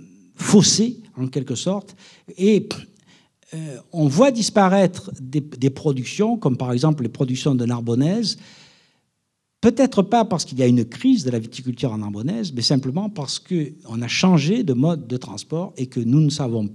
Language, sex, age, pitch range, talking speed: French, male, 60-79, 130-185 Hz, 170 wpm